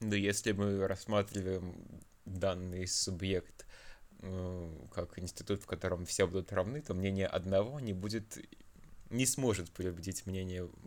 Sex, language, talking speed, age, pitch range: male, Russian, 120 wpm, 20-39, 90-105 Hz